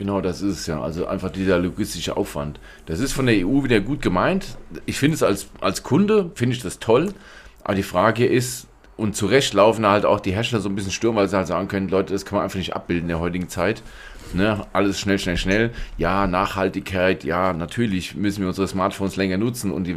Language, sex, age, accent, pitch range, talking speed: German, male, 40-59, German, 95-110 Hz, 230 wpm